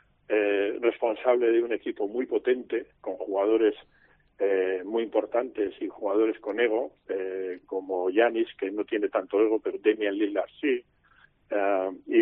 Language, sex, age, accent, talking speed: Spanish, male, 50-69, Spanish, 145 wpm